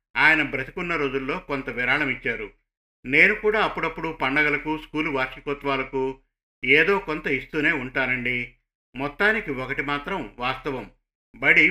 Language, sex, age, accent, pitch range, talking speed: Telugu, male, 50-69, native, 135-160 Hz, 110 wpm